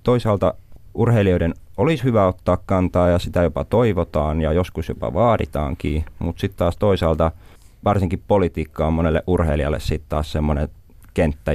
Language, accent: Finnish, native